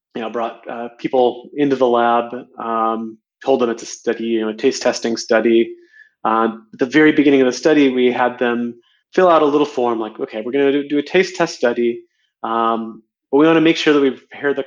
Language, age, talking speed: English, 30-49, 230 wpm